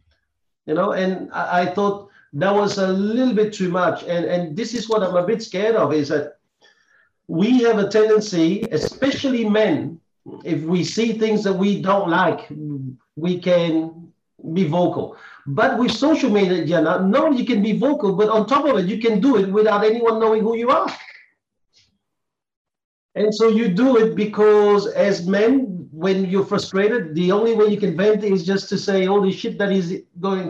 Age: 50-69